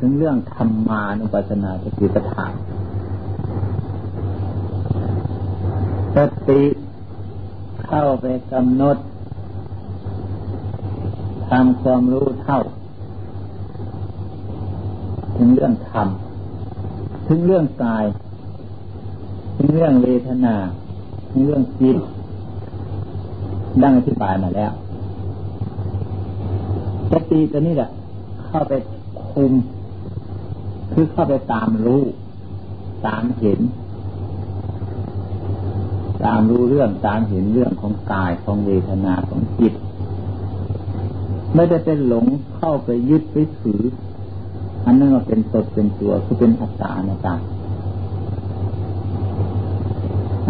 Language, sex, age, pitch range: Thai, male, 60-79, 95-120 Hz